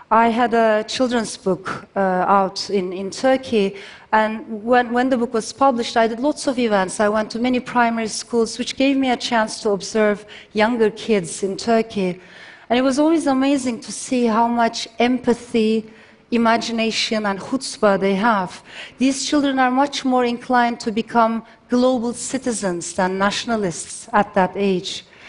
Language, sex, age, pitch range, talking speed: Russian, female, 40-59, 205-245 Hz, 165 wpm